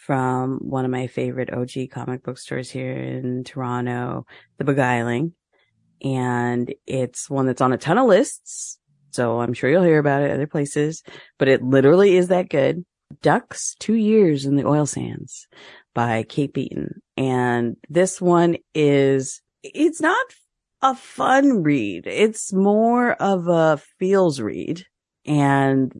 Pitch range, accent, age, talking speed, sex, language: 125-150 Hz, American, 30-49, 150 wpm, female, English